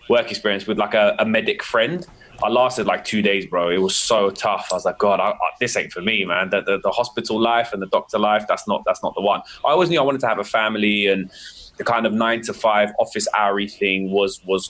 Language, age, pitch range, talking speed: English, 20-39, 100-125 Hz, 265 wpm